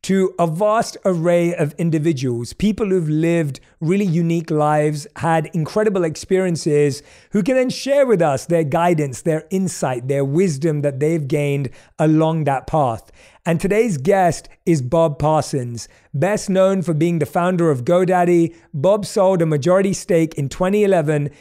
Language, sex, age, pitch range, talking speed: English, male, 30-49, 155-200 Hz, 150 wpm